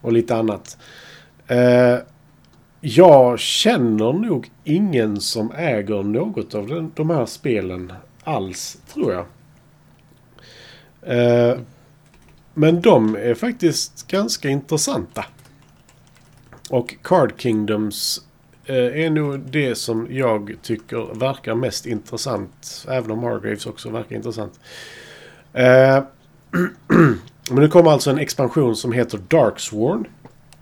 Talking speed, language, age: 110 wpm, Swedish, 40-59